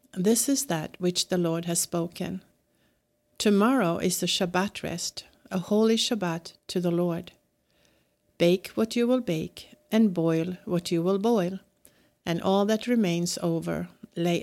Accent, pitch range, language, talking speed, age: Swedish, 170-210 Hz, English, 150 wpm, 60-79